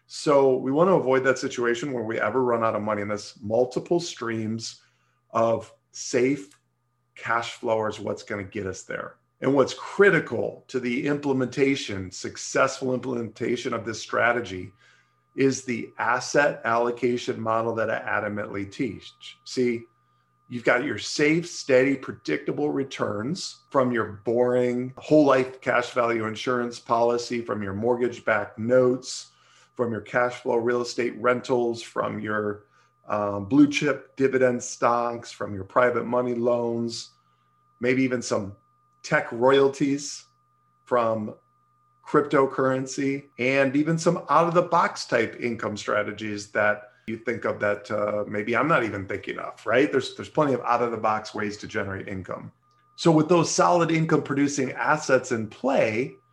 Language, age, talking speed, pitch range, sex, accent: English, 40-59, 145 wpm, 110-135 Hz, male, American